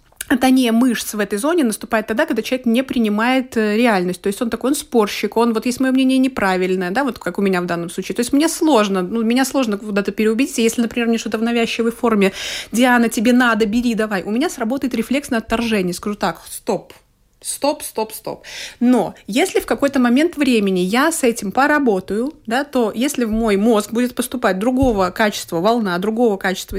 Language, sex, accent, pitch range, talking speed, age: Russian, female, native, 205-250 Hz, 195 wpm, 30-49